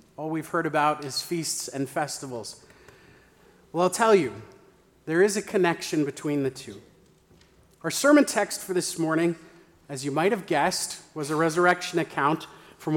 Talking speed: 160 wpm